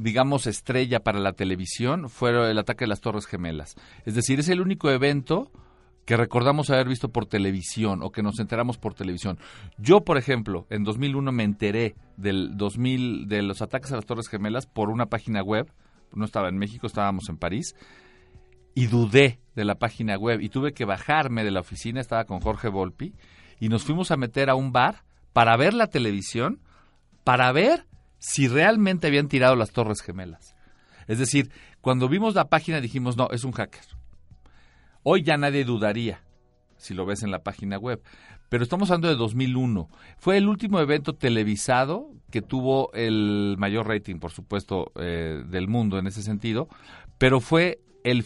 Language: Spanish